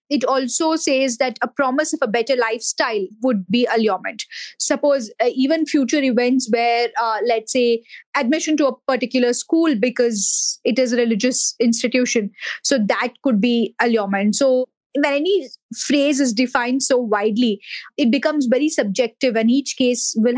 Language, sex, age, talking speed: English, female, 20-39, 155 wpm